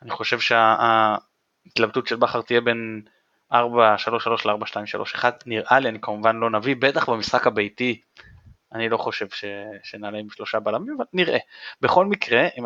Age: 20-39